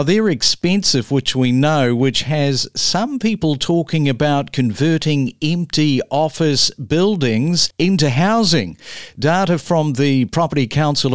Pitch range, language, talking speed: 130-165 Hz, English, 120 wpm